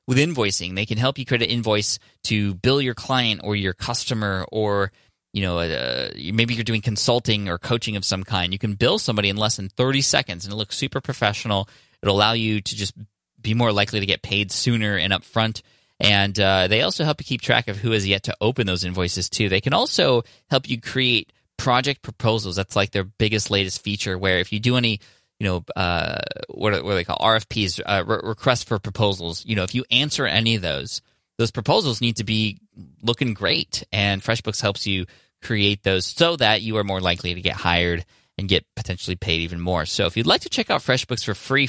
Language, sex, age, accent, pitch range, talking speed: English, male, 20-39, American, 100-120 Hz, 220 wpm